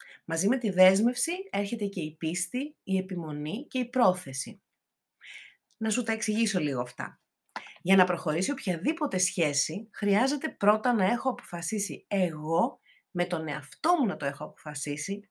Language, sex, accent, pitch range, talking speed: Greek, female, native, 175-250 Hz, 150 wpm